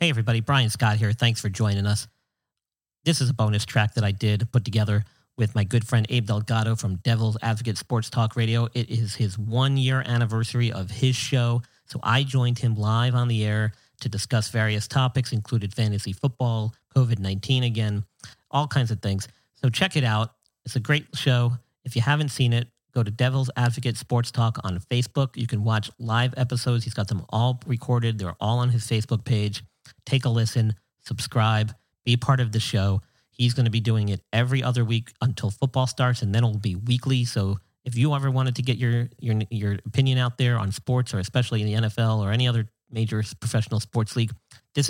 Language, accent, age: English, American, 40-59